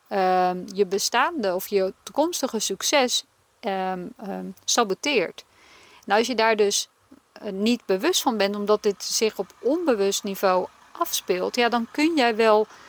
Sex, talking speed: female, 150 wpm